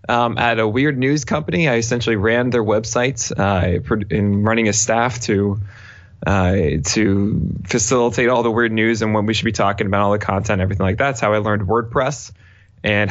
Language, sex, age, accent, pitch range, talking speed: English, male, 20-39, American, 100-125 Hz, 200 wpm